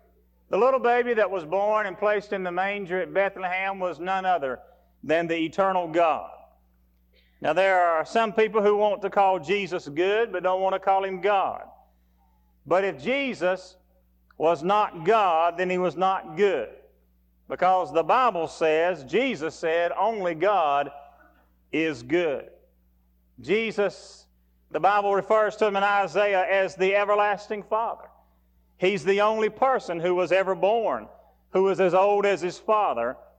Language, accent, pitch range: English, American, 160-205 Hz